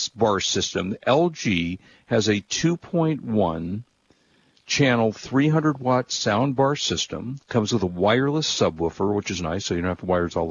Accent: American